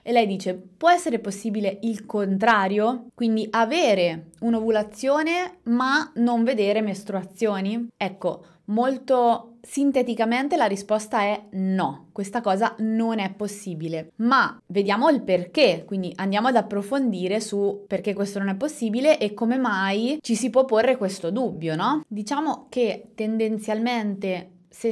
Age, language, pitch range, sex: 20-39, Italian, 190-230 Hz, female